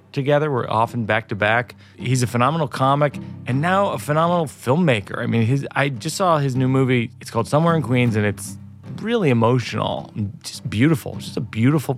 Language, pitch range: English, 105-150 Hz